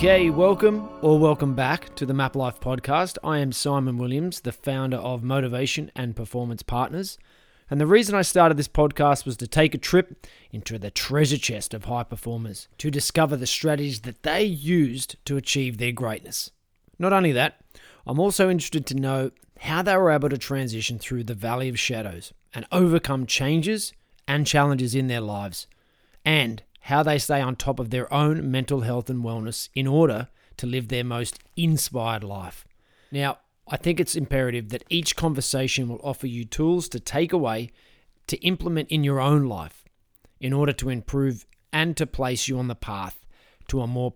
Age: 20-39